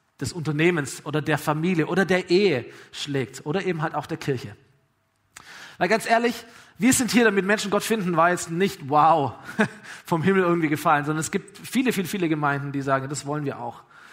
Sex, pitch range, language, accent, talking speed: male, 160-210 Hz, German, German, 195 wpm